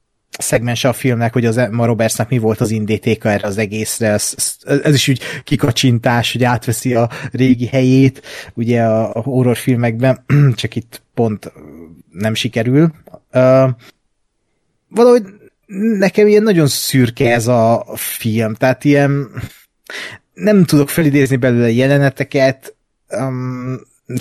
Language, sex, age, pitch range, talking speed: Hungarian, male, 30-49, 120-145 Hz, 125 wpm